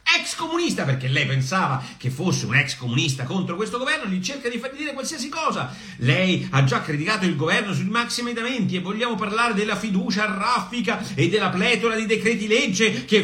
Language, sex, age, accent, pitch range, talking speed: Italian, male, 50-69, native, 175-270 Hz, 190 wpm